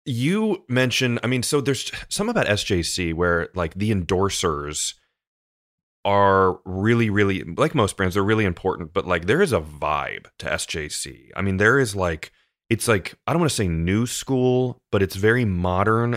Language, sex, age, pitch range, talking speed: English, male, 30-49, 85-105 Hz, 180 wpm